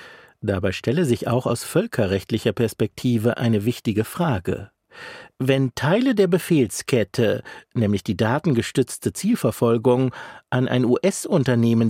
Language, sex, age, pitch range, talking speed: German, male, 50-69, 110-150 Hz, 105 wpm